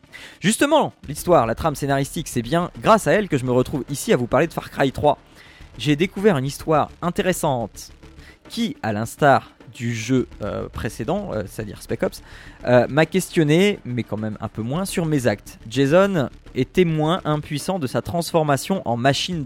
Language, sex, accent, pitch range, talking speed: French, male, French, 115-165 Hz, 180 wpm